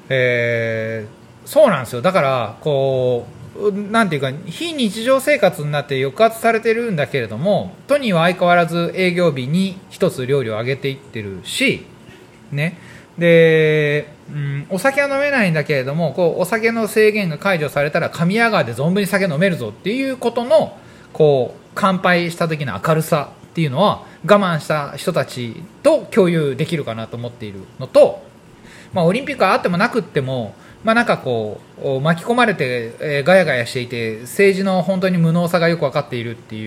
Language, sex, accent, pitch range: Japanese, male, native, 125-200 Hz